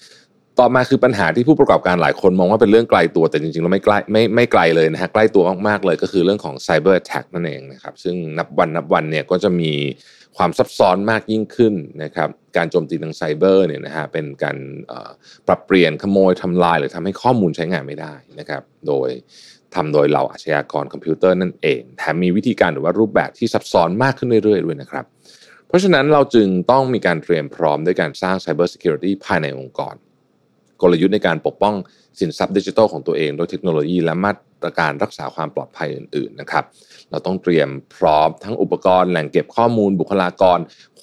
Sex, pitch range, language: male, 80-110 Hz, Thai